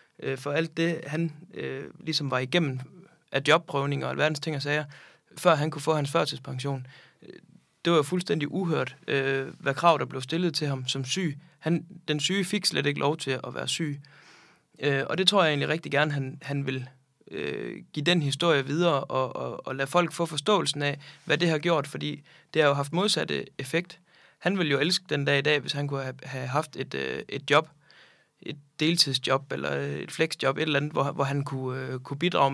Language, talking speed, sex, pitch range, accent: Danish, 195 wpm, male, 140-165 Hz, native